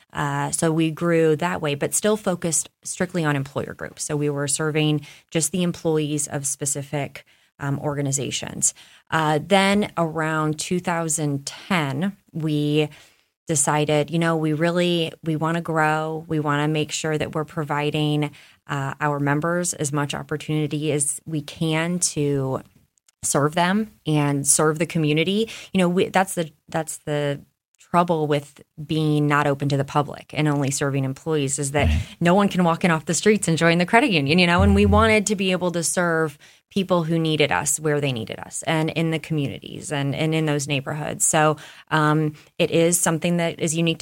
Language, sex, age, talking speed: English, female, 20-39, 175 wpm